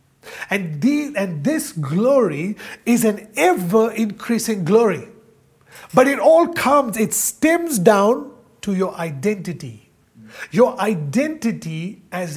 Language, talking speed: English, 105 wpm